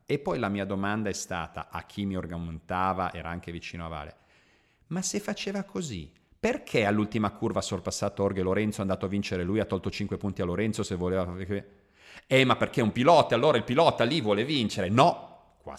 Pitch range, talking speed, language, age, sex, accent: 90-110 Hz, 205 wpm, Italian, 40-59, male, native